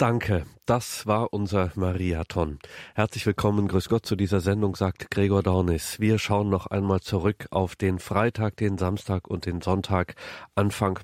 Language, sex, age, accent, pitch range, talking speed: German, male, 40-59, German, 95-110 Hz, 160 wpm